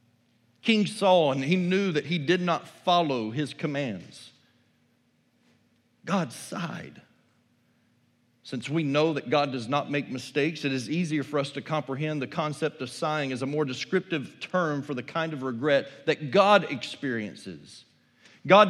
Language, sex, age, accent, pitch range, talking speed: English, male, 40-59, American, 145-195 Hz, 155 wpm